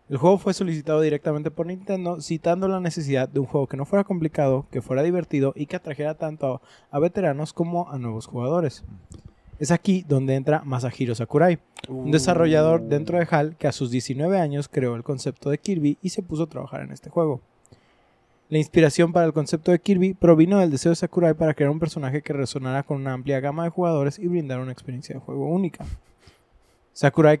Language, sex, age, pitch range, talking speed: Spanish, male, 20-39, 135-170 Hz, 200 wpm